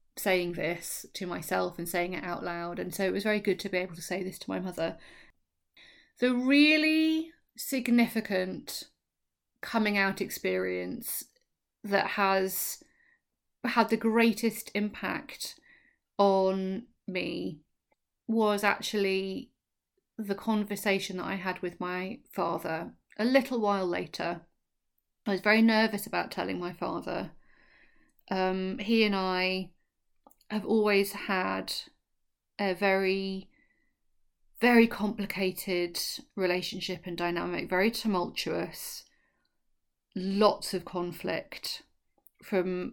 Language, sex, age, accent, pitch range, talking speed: English, female, 30-49, British, 185-225 Hz, 110 wpm